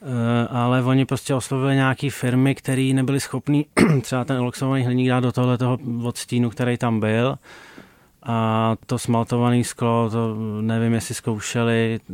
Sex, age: male, 30-49